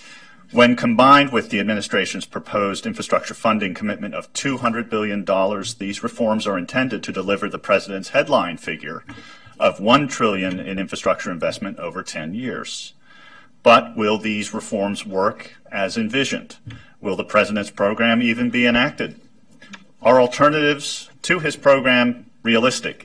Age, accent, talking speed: 40-59, American, 135 wpm